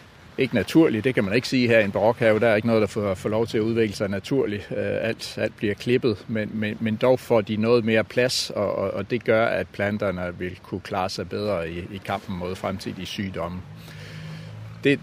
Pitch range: 100-120 Hz